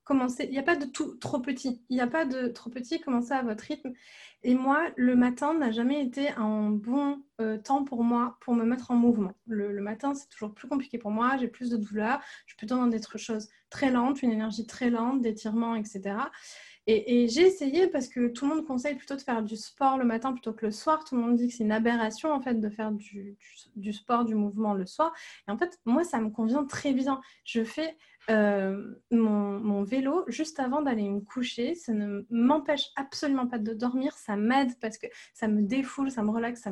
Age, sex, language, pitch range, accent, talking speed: 20-39, female, French, 220-275 Hz, French, 235 wpm